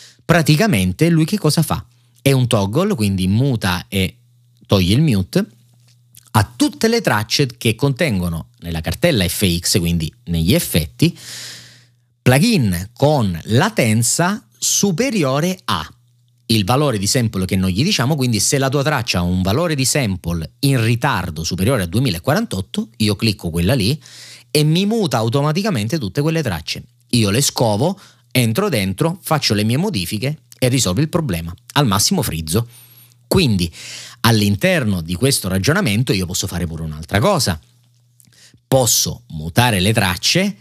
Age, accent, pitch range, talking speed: 30-49, native, 95-135 Hz, 140 wpm